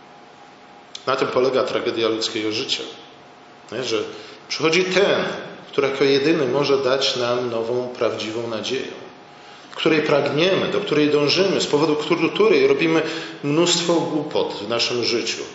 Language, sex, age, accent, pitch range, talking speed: Polish, male, 40-59, native, 120-160 Hz, 125 wpm